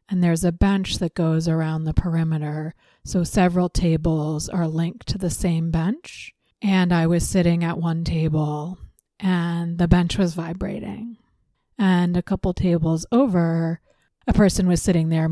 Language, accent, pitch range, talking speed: English, American, 165-185 Hz, 155 wpm